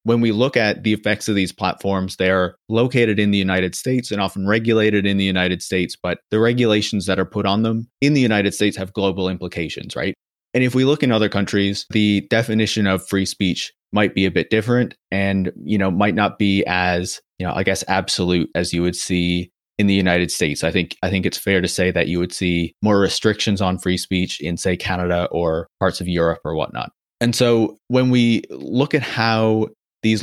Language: English